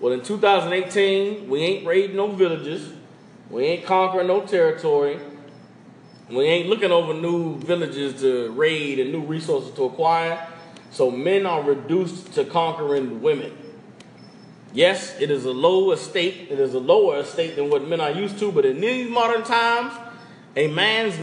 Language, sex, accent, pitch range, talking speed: English, male, American, 160-215 Hz, 160 wpm